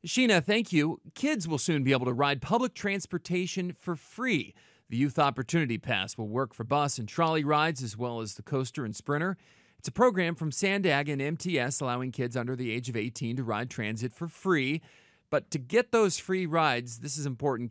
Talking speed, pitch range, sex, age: 205 wpm, 130-185 Hz, male, 40-59